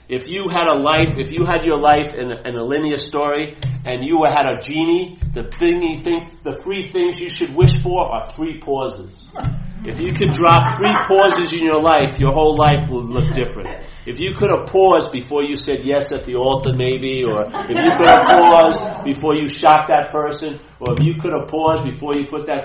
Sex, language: male, English